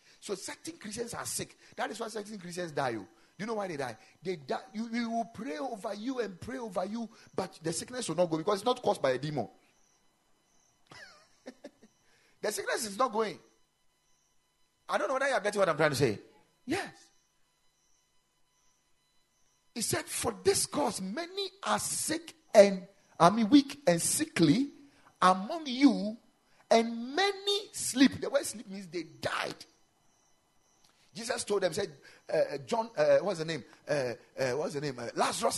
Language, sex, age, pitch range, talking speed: English, male, 40-59, 180-260 Hz, 175 wpm